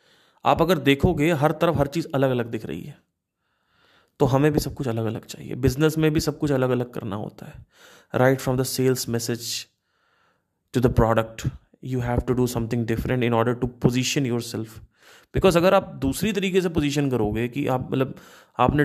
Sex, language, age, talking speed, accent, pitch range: male, Hindi, 30-49, 195 wpm, native, 120-155 Hz